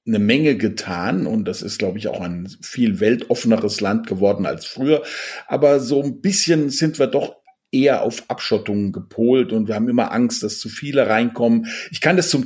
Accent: German